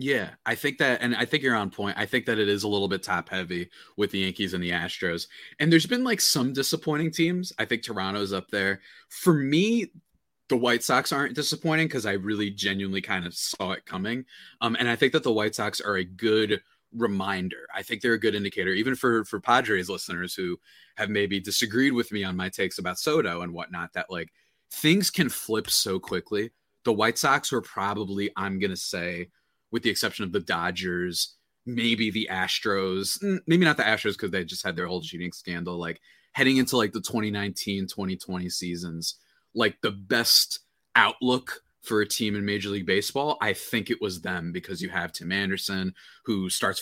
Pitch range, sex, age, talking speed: 95-125 Hz, male, 30-49, 200 wpm